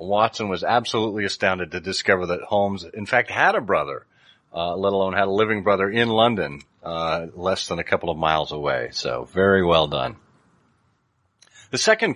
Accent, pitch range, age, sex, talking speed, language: American, 95-125 Hz, 40-59, male, 180 wpm, English